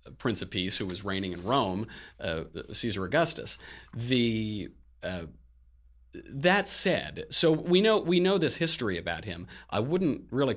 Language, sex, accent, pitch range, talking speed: English, male, American, 95-125 Hz, 155 wpm